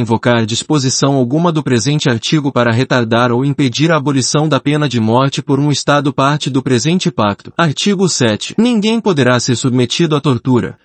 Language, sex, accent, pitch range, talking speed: Portuguese, male, Brazilian, 125-170 Hz, 170 wpm